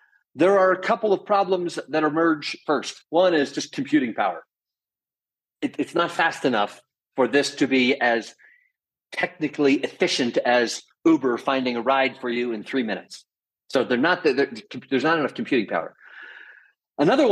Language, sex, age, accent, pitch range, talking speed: English, male, 40-59, American, 140-200 Hz, 145 wpm